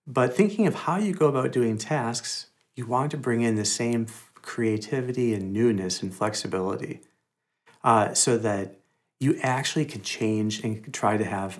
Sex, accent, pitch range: male, American, 105-145 Hz